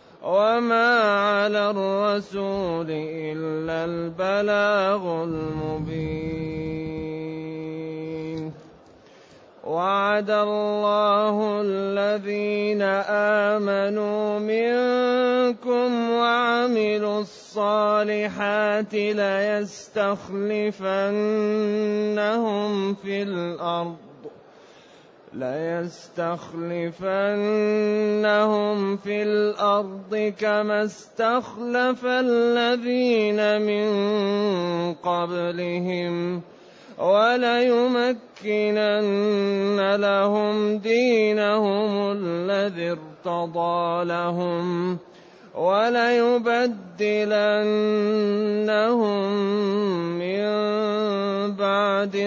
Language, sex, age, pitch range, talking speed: Arabic, male, 20-39, 180-215 Hz, 40 wpm